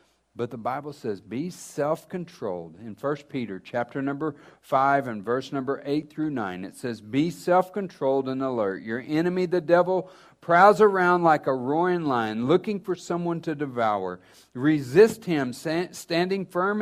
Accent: American